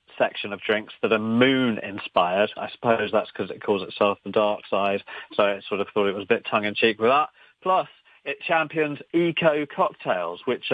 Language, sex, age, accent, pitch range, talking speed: English, male, 40-59, British, 110-130 Hz, 195 wpm